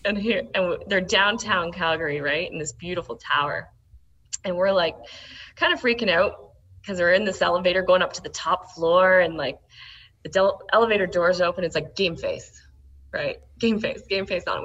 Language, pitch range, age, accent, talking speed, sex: English, 175-225 Hz, 20-39, American, 195 wpm, female